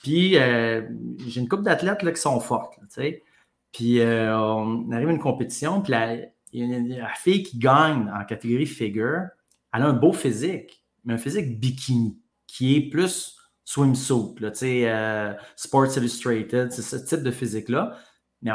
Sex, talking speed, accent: male, 150 wpm, Canadian